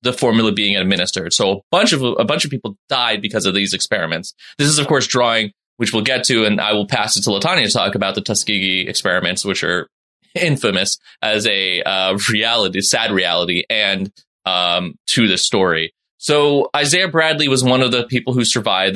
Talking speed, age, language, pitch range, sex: 200 wpm, 20-39, English, 105-140 Hz, male